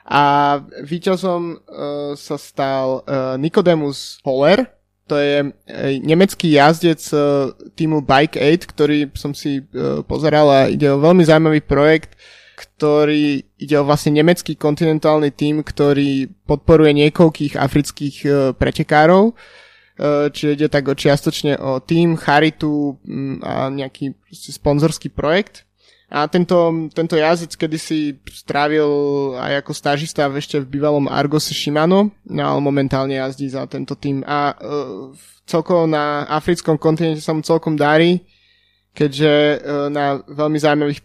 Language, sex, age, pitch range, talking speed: Slovak, male, 20-39, 140-160 Hz, 120 wpm